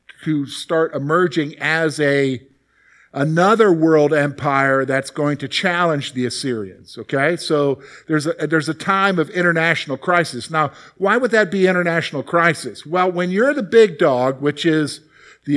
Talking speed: 155 wpm